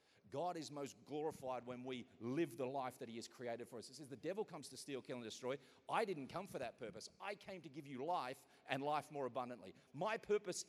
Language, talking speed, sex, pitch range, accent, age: English, 240 wpm, male, 130-170 Hz, Australian, 40-59